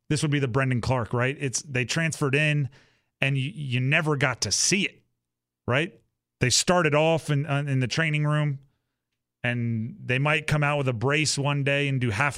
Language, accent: English, American